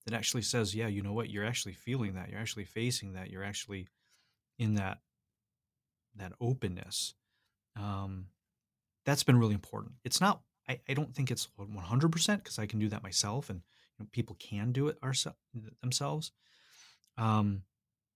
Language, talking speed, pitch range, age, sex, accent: English, 165 wpm, 105-130 Hz, 30-49, male, American